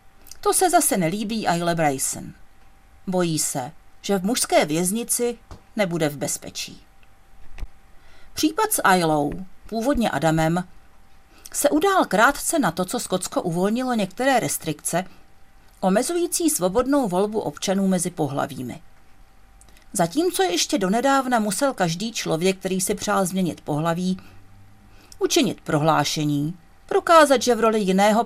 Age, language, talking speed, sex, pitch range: 40-59, Czech, 115 wpm, female, 165-255 Hz